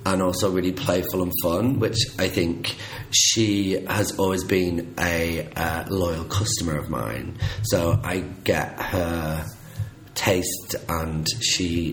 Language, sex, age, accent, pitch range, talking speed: English, male, 30-49, British, 85-115 Hz, 130 wpm